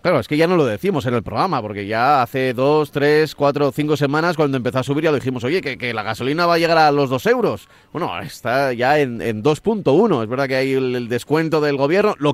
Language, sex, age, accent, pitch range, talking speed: Spanish, male, 30-49, Spanish, 130-170 Hz, 260 wpm